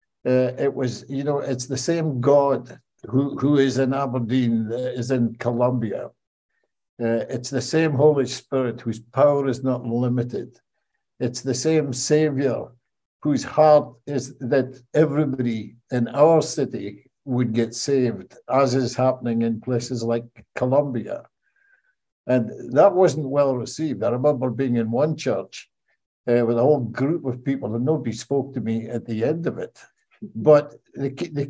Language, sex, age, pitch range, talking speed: English, male, 60-79, 120-145 Hz, 150 wpm